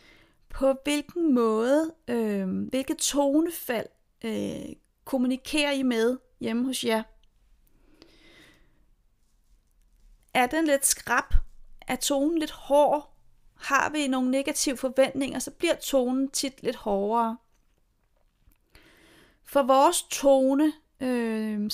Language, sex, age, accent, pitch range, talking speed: Danish, female, 30-49, native, 240-285 Hz, 100 wpm